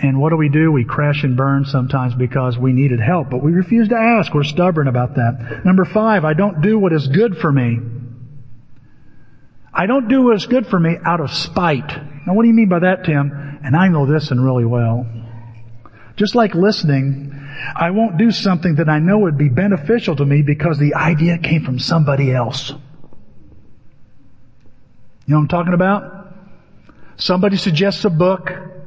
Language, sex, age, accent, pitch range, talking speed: English, male, 50-69, American, 135-195 Hz, 190 wpm